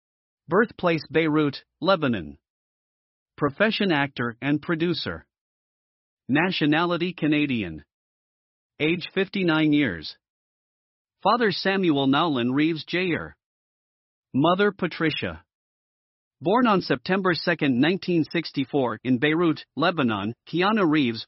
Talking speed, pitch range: 80 wpm, 130-175 Hz